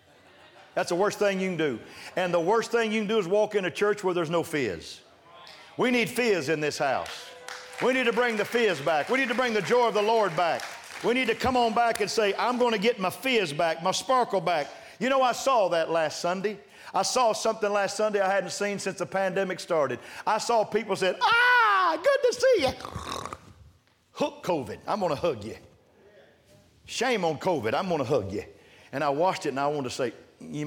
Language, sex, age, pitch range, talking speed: English, male, 50-69, 150-215 Hz, 230 wpm